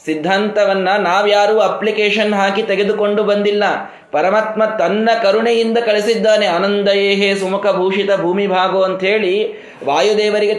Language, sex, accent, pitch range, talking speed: Kannada, male, native, 190-230 Hz, 95 wpm